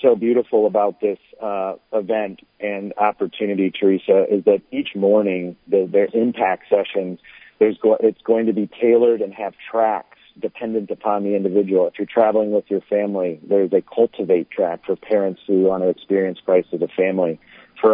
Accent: American